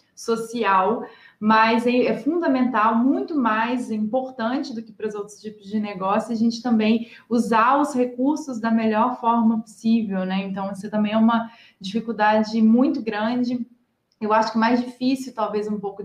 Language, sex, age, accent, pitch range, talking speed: Portuguese, female, 20-39, Brazilian, 205-245 Hz, 155 wpm